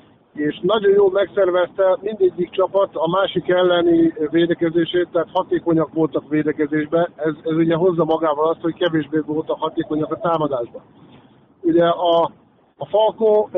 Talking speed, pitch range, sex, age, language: 135 wpm, 160-185 Hz, male, 50-69, Hungarian